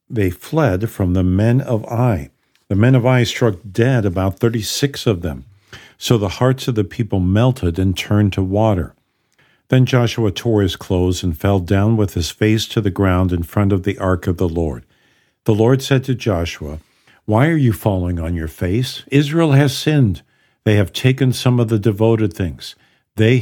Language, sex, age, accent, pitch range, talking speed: English, male, 50-69, American, 95-120 Hz, 190 wpm